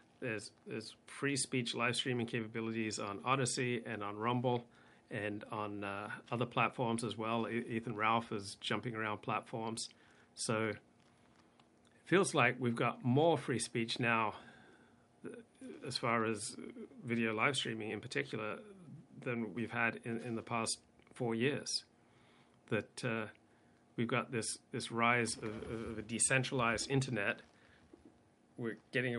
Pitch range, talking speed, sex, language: 110-130 Hz, 135 wpm, male, English